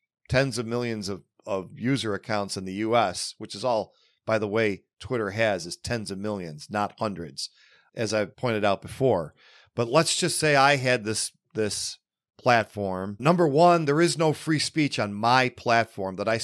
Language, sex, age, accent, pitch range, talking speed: English, male, 40-59, American, 110-140 Hz, 185 wpm